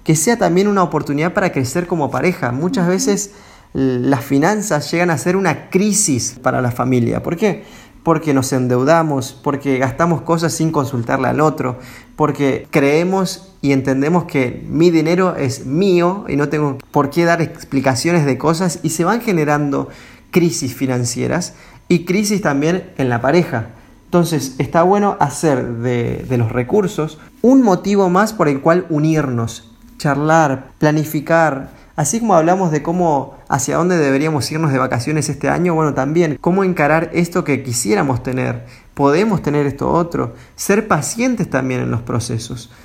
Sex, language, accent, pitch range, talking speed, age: male, Spanish, Argentinian, 135-175 Hz, 155 wpm, 30-49